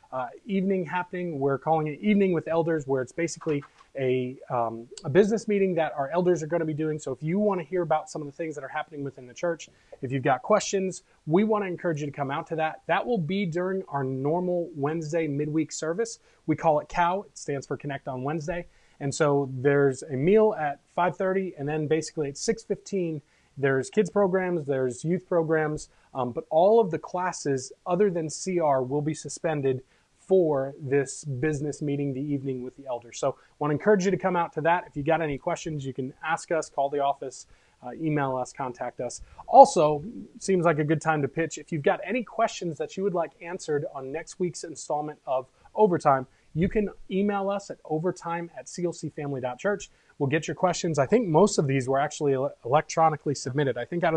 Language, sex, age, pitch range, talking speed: English, male, 20-39, 140-180 Hz, 210 wpm